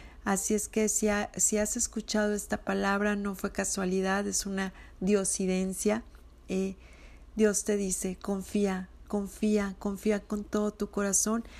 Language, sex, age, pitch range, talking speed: Spanish, female, 40-59, 195-215 Hz, 140 wpm